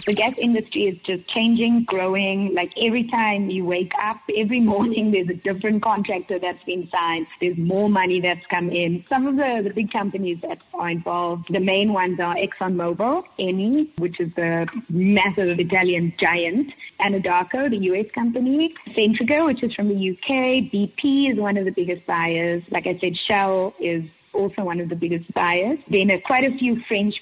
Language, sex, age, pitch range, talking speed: English, female, 20-39, 175-215 Hz, 180 wpm